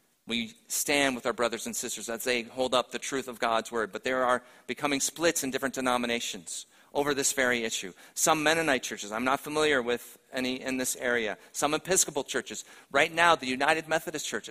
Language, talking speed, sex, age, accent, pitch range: English, 200 wpm, male, 40-59, American, 110-140 Hz